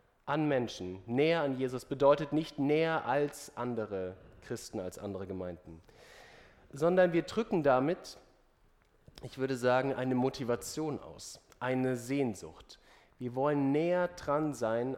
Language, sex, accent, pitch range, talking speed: German, male, German, 125-170 Hz, 125 wpm